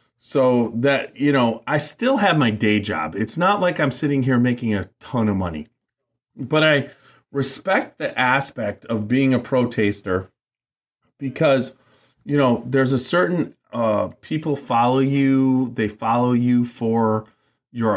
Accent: American